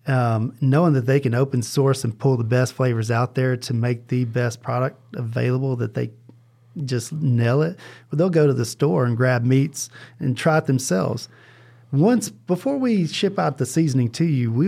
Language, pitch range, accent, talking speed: English, 120-140 Hz, American, 195 wpm